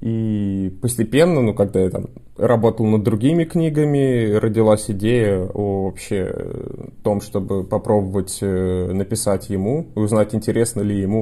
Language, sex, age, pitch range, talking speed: Russian, male, 20-39, 100-120 Hz, 130 wpm